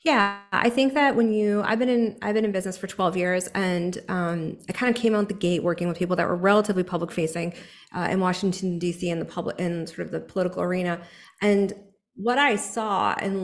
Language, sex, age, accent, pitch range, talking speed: English, female, 30-49, American, 180-215 Hz, 230 wpm